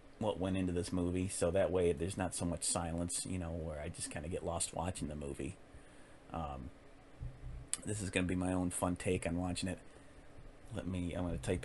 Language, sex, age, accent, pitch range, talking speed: English, male, 40-59, American, 85-110 Hz, 225 wpm